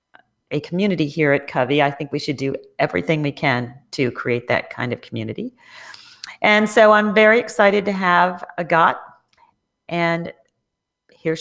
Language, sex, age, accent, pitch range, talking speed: English, female, 40-59, American, 150-180 Hz, 155 wpm